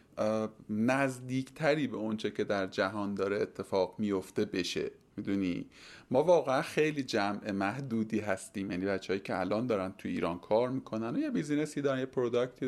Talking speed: 165 wpm